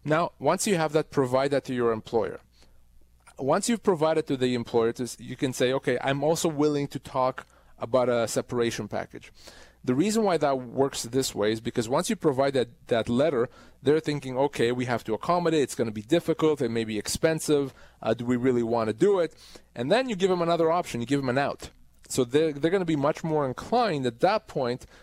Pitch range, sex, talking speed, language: 125-160 Hz, male, 220 wpm, English